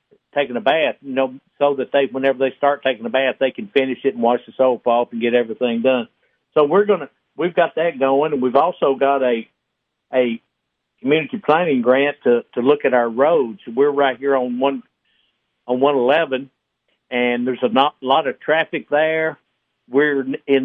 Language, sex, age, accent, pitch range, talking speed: English, male, 60-79, American, 130-145 Hz, 195 wpm